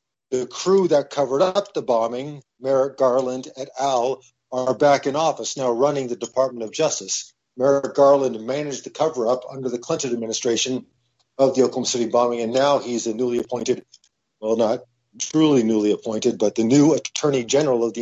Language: English